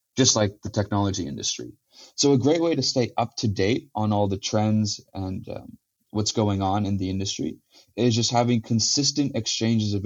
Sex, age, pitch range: male, 30-49, 100-120 Hz